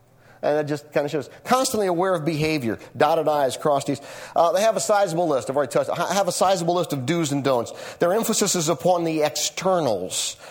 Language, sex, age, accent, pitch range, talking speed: English, male, 40-59, American, 120-170 Hz, 215 wpm